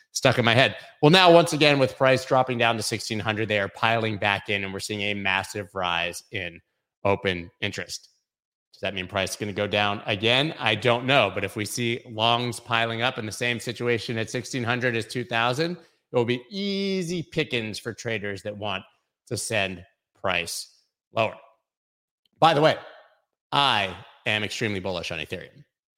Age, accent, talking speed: 30-49, American, 180 wpm